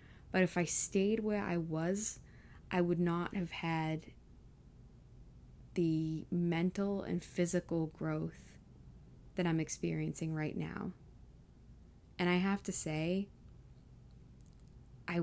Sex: female